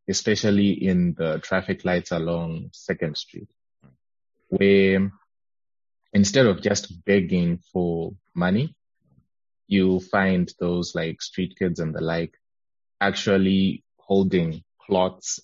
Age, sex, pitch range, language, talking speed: 20-39, male, 85-105 Hz, English, 105 wpm